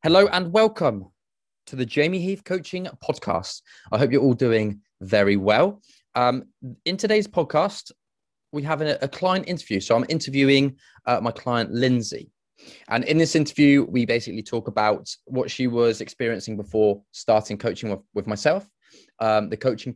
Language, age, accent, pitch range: English, 20-39, British, 105-135 Hz